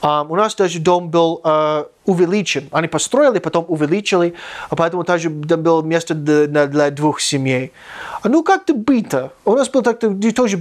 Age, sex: 30-49, male